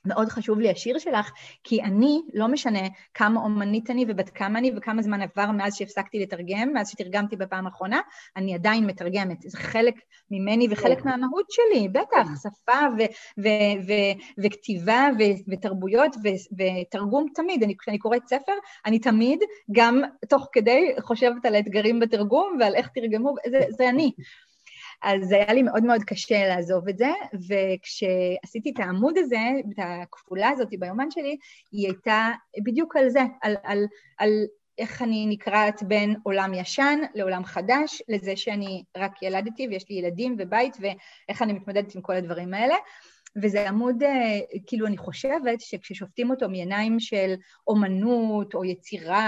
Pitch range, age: 200-250 Hz, 30-49